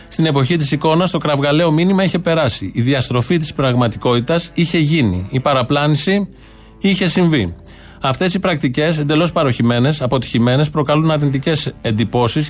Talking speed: 135 wpm